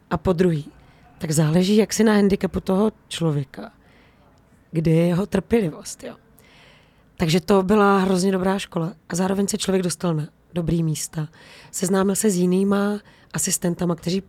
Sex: female